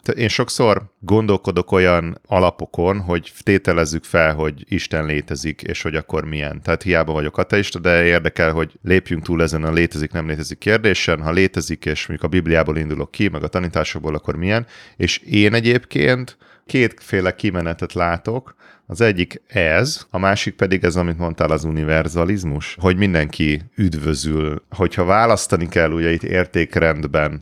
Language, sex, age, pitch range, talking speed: Hungarian, male, 30-49, 80-95 Hz, 150 wpm